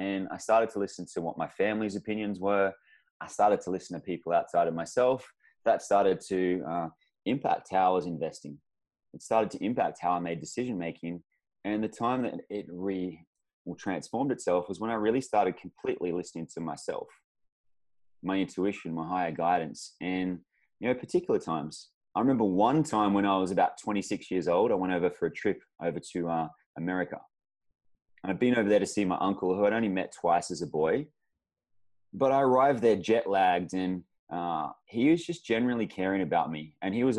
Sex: male